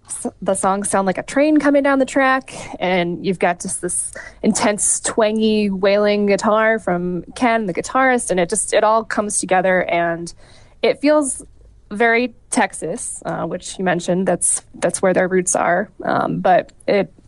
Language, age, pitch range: English, 20-39, 185-225 Hz